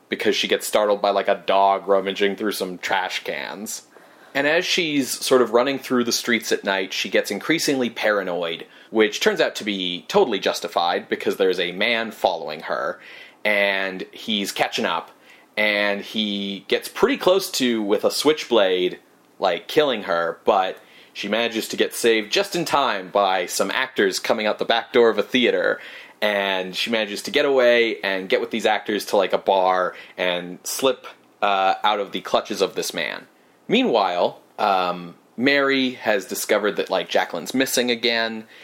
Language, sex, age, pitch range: English, male, 30-49, 100-140 Hz